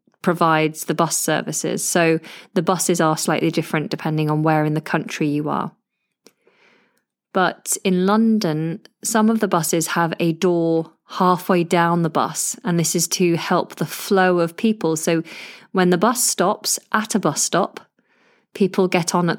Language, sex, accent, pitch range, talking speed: English, female, British, 160-190 Hz, 165 wpm